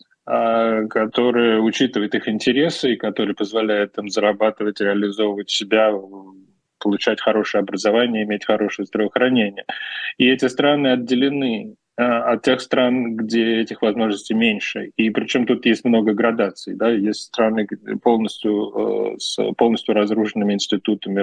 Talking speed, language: 120 wpm, Russian